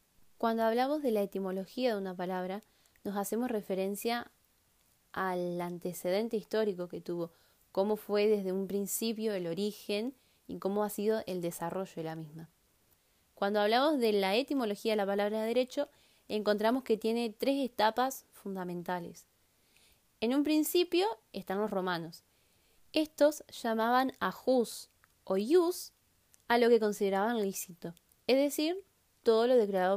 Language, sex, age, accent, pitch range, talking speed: Spanish, female, 20-39, Argentinian, 190-235 Hz, 140 wpm